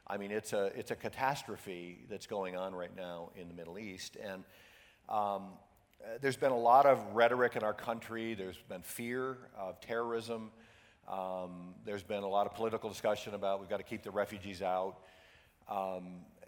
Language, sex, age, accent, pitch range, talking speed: English, male, 50-69, American, 95-120 Hz, 180 wpm